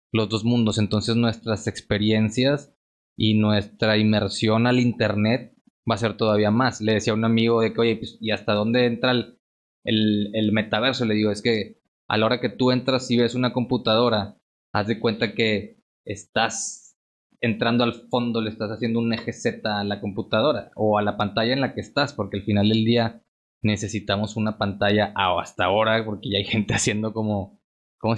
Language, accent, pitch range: Spanish, Mexican, 105-120 Hz